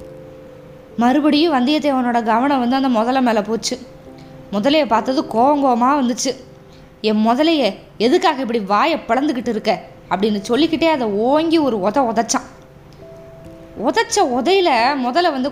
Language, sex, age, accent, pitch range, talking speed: Tamil, female, 20-39, native, 215-295 Hz, 115 wpm